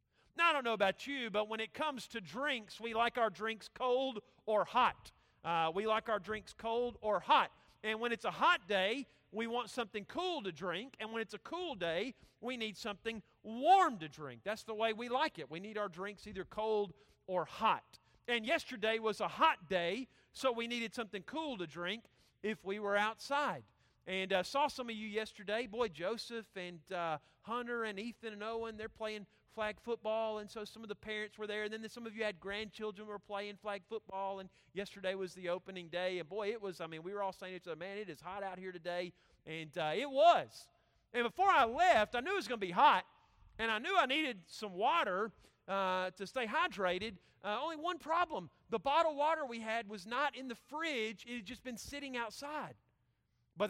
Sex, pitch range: male, 195-240 Hz